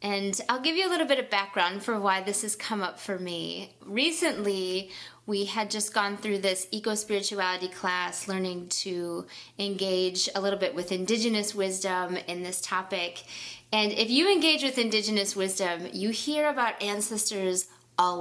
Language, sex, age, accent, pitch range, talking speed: English, female, 20-39, American, 190-260 Hz, 165 wpm